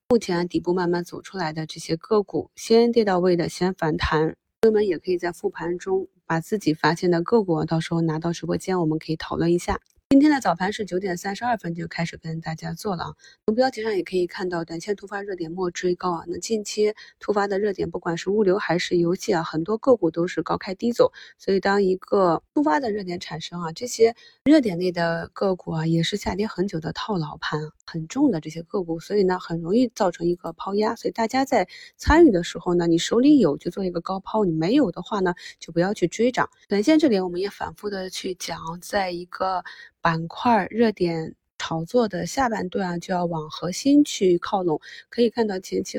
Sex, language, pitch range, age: female, Chinese, 170-215 Hz, 20-39